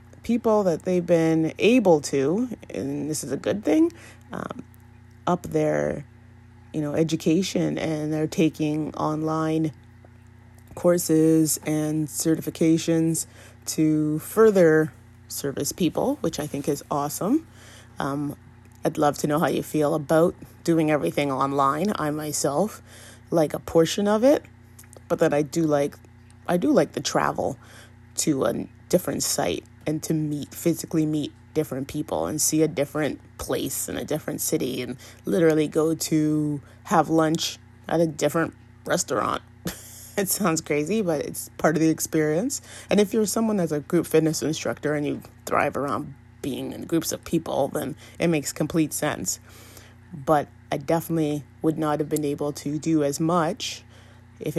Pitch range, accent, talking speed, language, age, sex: 140-160 Hz, American, 150 wpm, English, 30-49, female